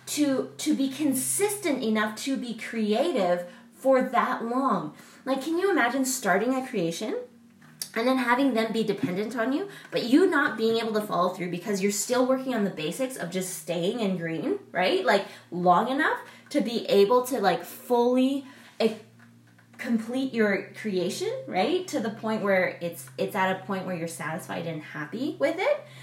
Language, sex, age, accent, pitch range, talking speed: English, female, 20-39, American, 185-255 Hz, 175 wpm